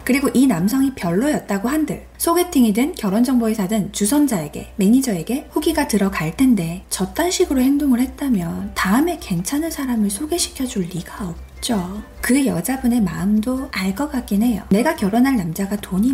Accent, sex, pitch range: native, female, 195-260 Hz